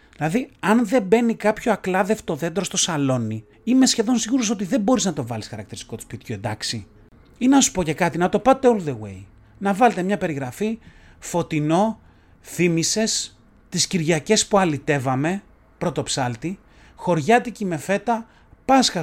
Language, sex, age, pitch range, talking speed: Greek, male, 30-49, 125-210 Hz, 155 wpm